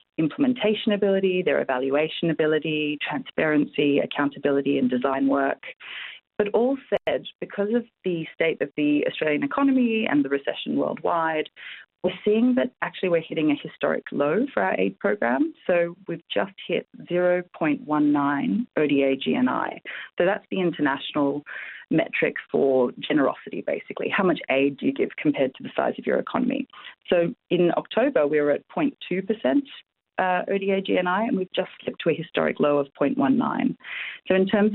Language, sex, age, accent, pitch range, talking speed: English, female, 30-49, Australian, 145-210 Hz, 155 wpm